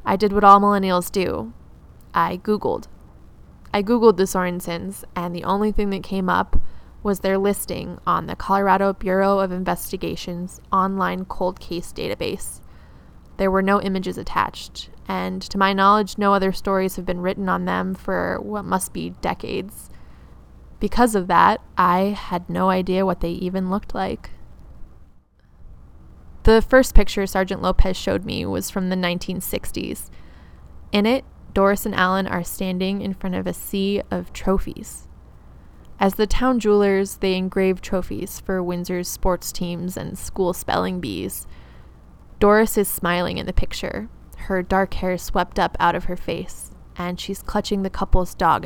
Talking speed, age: 155 wpm, 20-39